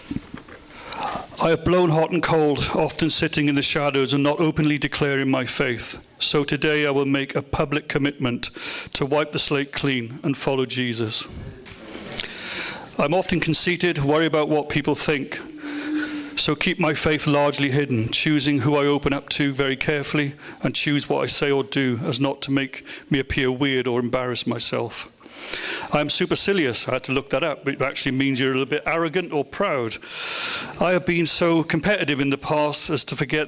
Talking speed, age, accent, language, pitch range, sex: 185 wpm, 40-59, British, English, 135-160 Hz, male